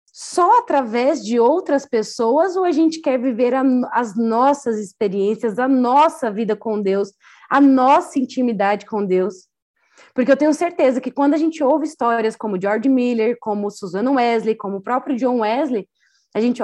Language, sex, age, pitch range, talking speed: Portuguese, female, 20-39, 215-265 Hz, 170 wpm